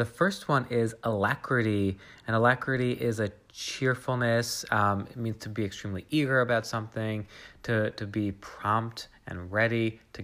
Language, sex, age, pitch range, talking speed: English, male, 20-39, 100-115 Hz, 150 wpm